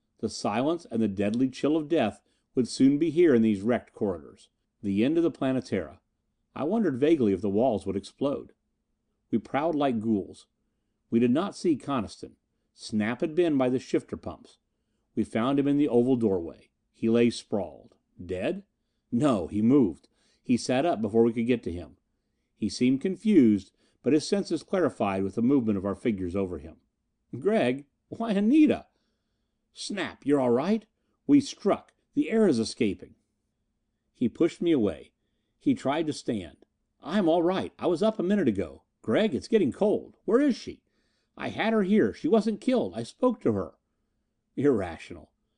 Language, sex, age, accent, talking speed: English, male, 40-59, American, 175 wpm